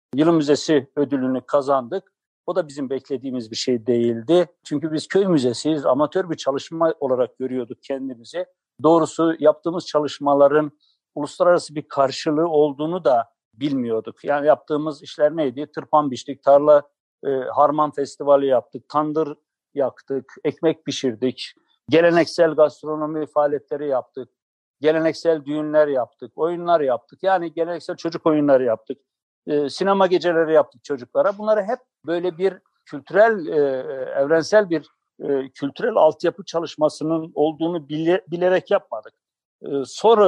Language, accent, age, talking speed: Turkish, native, 60-79, 115 wpm